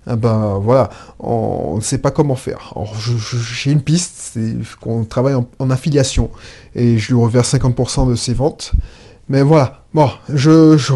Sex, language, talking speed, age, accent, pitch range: male, French, 185 wpm, 20-39, French, 125-175 Hz